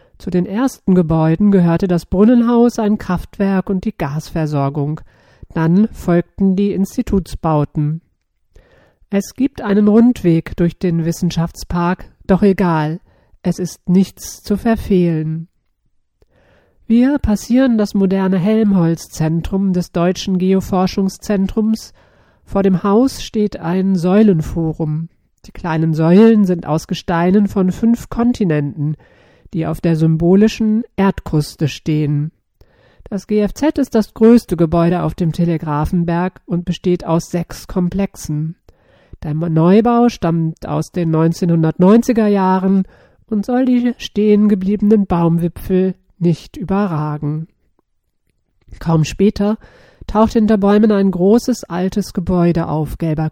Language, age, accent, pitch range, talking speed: German, 50-69, German, 165-210 Hz, 110 wpm